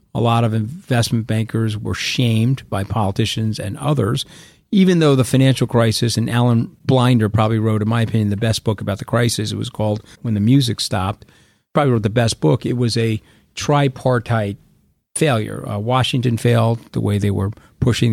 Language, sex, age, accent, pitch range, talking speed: English, male, 50-69, American, 110-130 Hz, 180 wpm